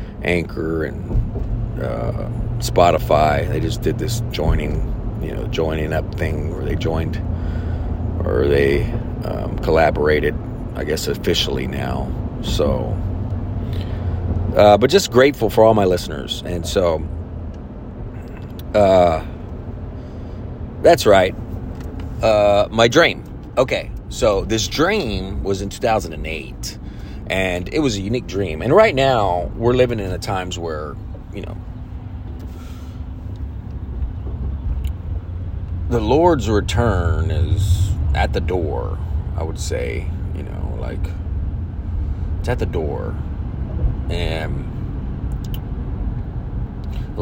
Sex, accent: male, American